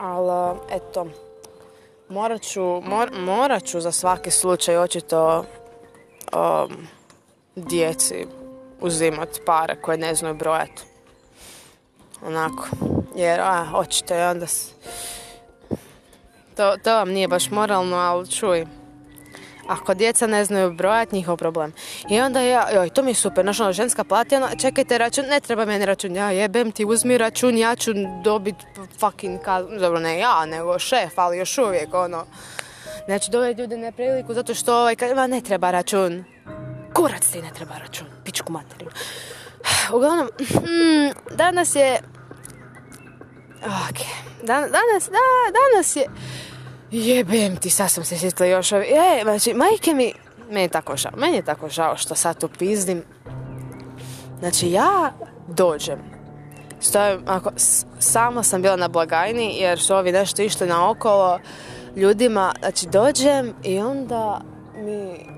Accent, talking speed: native, 140 wpm